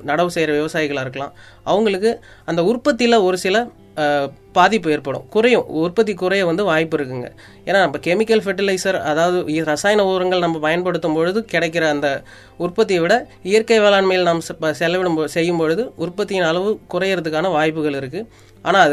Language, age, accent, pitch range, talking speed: Tamil, 30-49, native, 155-195 Hz, 135 wpm